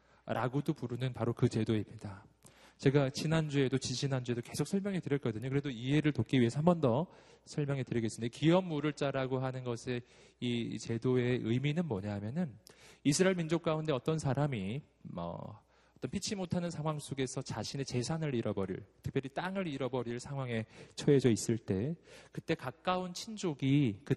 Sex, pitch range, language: male, 120-175 Hz, Korean